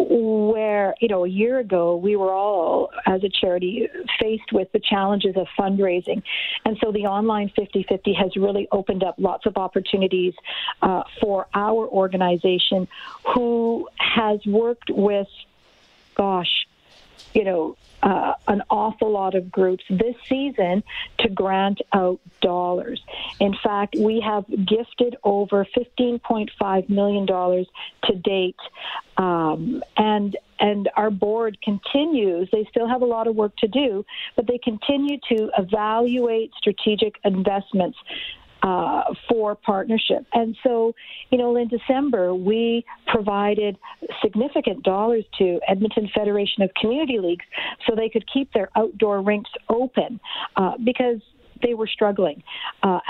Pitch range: 195-230 Hz